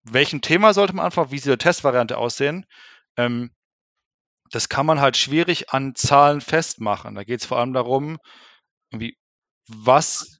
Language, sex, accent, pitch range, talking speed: German, male, German, 120-145 Hz, 150 wpm